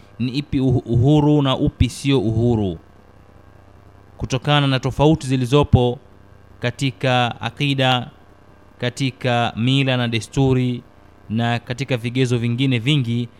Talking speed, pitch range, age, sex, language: 100 wpm, 100-135 Hz, 30-49, male, Swahili